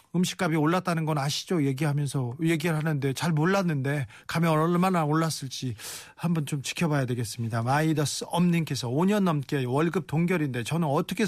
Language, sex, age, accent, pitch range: Korean, male, 40-59, native, 140-175 Hz